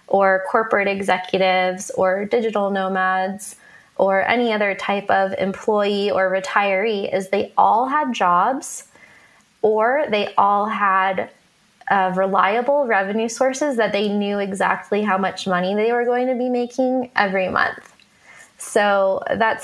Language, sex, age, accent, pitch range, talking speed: English, female, 20-39, American, 190-225 Hz, 135 wpm